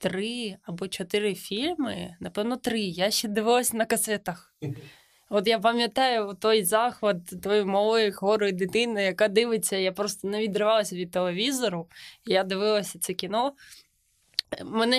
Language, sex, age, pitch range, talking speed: Ukrainian, female, 20-39, 195-235 Hz, 130 wpm